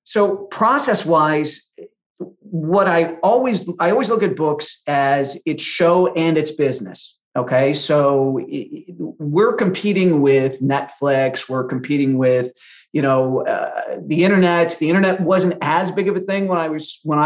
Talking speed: 150 wpm